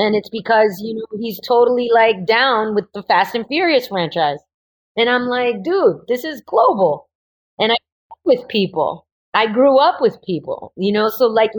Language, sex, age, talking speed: English, female, 30-49, 190 wpm